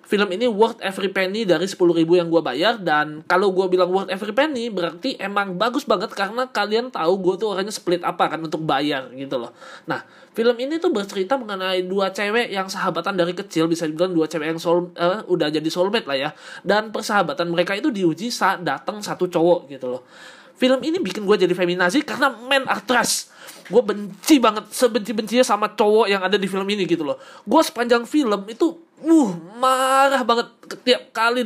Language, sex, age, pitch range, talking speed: Indonesian, male, 20-39, 180-240 Hz, 195 wpm